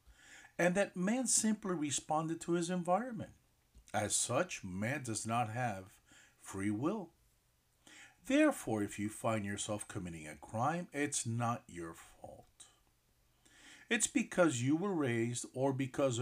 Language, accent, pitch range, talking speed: English, American, 110-180 Hz, 130 wpm